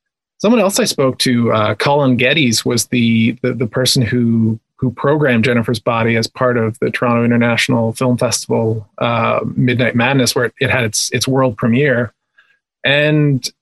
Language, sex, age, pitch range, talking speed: English, male, 30-49, 120-140 Hz, 165 wpm